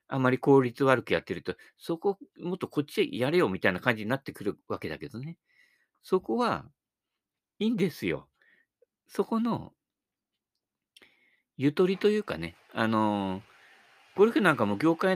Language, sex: Japanese, male